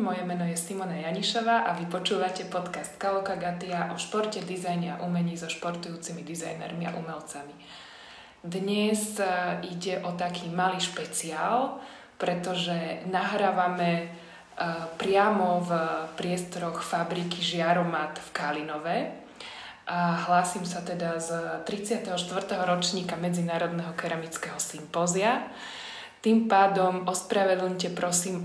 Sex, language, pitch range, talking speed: female, Slovak, 165-185 Hz, 105 wpm